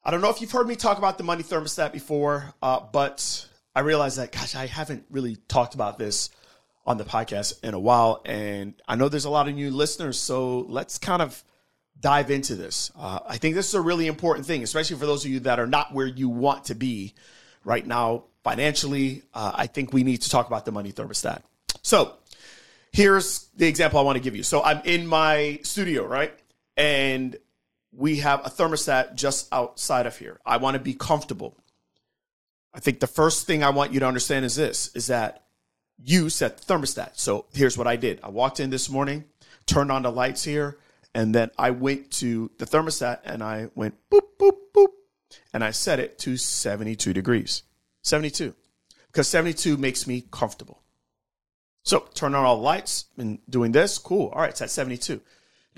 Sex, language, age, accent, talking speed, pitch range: male, English, 30-49, American, 200 wpm, 120-150 Hz